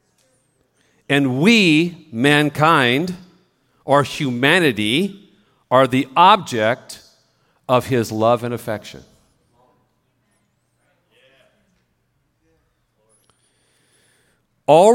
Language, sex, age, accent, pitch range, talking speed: English, male, 40-59, American, 125-170 Hz, 55 wpm